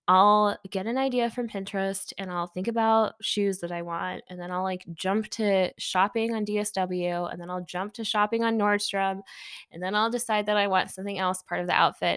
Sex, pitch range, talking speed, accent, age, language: female, 185-225 Hz, 215 wpm, American, 10-29, English